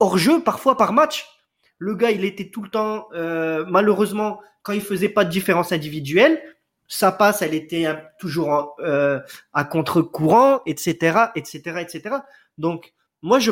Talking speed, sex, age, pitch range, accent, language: 155 wpm, male, 30-49, 170-235 Hz, French, French